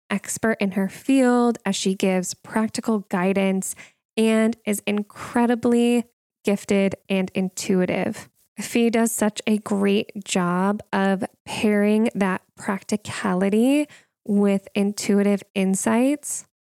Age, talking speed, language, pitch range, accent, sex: 10-29, 100 wpm, English, 195-225 Hz, American, female